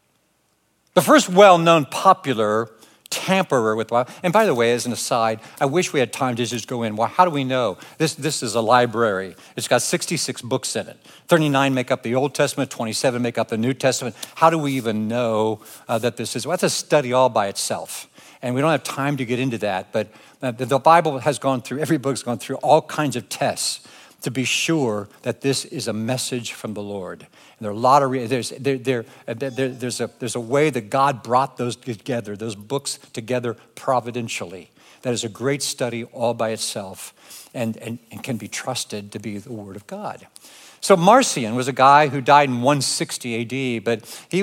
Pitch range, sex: 115-140 Hz, male